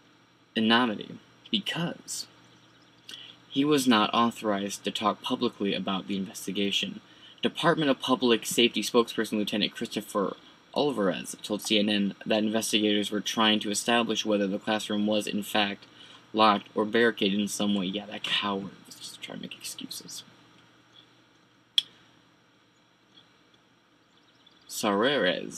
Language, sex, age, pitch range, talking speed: English, male, 20-39, 100-120 Hz, 120 wpm